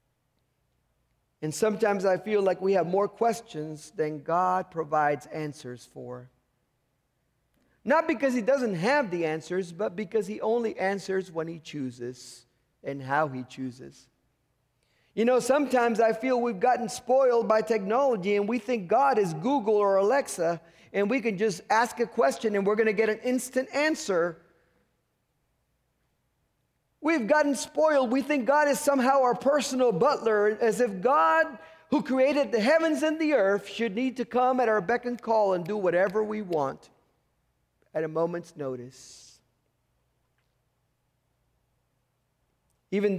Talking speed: 145 wpm